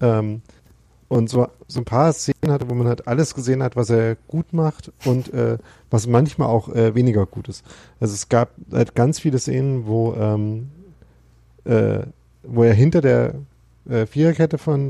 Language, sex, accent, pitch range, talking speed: German, male, German, 110-135 Hz, 170 wpm